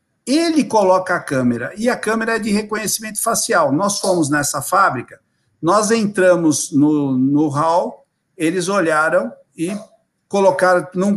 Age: 60-79